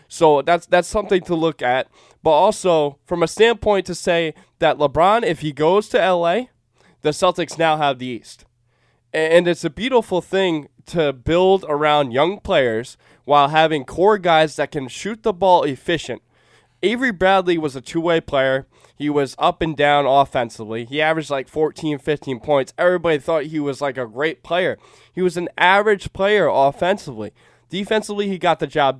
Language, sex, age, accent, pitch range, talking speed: English, male, 20-39, American, 135-175 Hz, 175 wpm